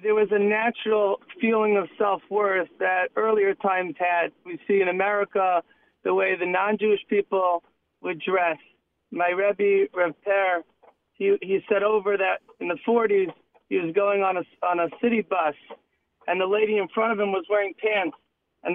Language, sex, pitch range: English, male, 185-215 Hz